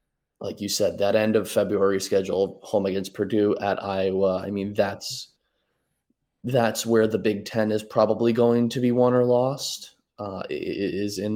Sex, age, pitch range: male, 20-39, 100-130 Hz